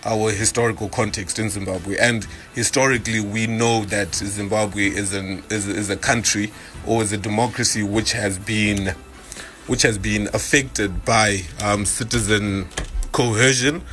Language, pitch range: English, 100-120 Hz